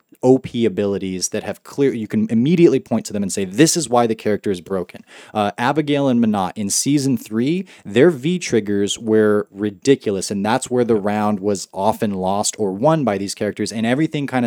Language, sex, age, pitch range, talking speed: English, male, 20-39, 105-125 Hz, 200 wpm